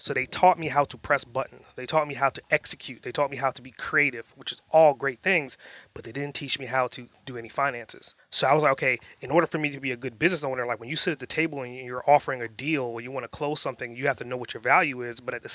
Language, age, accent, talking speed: English, 30-49, American, 310 wpm